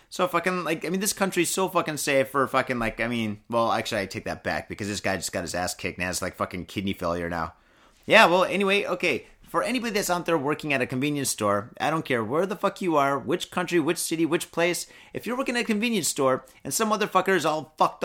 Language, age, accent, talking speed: English, 30-49, American, 260 wpm